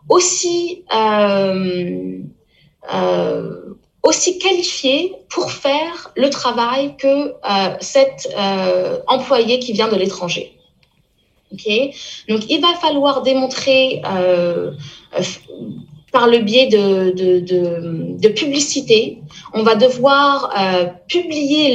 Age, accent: 20-39, French